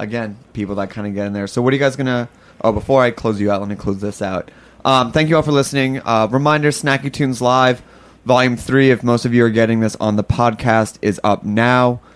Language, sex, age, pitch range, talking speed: English, male, 20-39, 110-125 Hz, 255 wpm